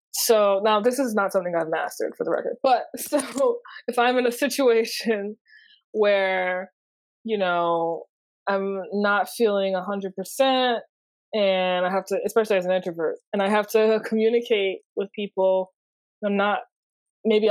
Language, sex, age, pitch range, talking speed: English, female, 20-39, 185-235 Hz, 155 wpm